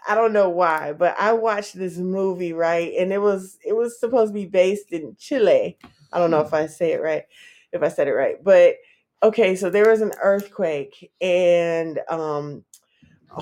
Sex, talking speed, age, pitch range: female, 195 wpm, 20-39, 175-215 Hz